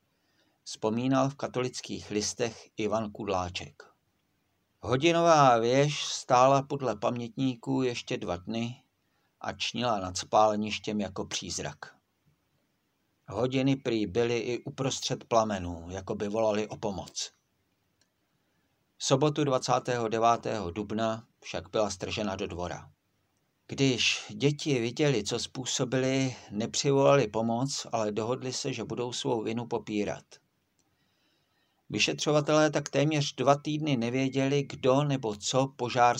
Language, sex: Czech, male